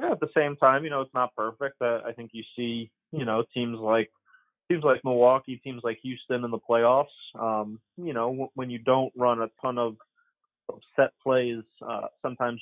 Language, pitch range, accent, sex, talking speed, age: English, 110-130 Hz, American, male, 210 wpm, 20-39